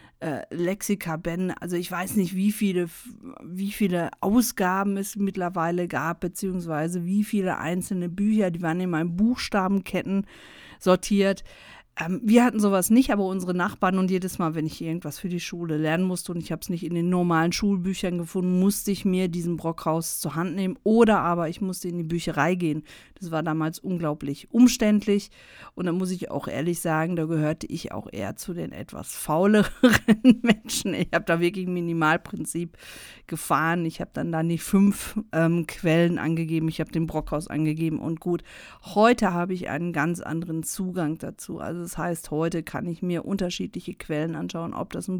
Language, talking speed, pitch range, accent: German, 180 wpm, 165-195 Hz, German